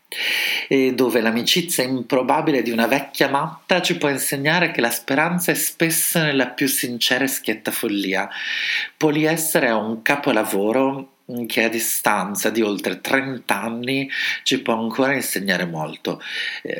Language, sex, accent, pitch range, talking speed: Italian, male, native, 110-150 Hz, 130 wpm